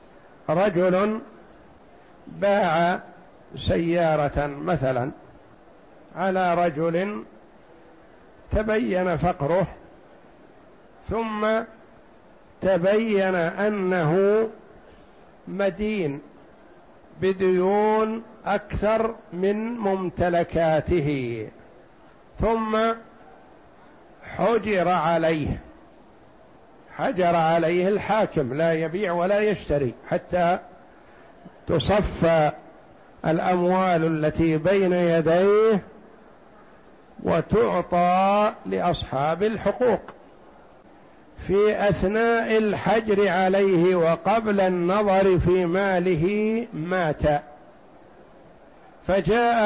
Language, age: Arabic, 60-79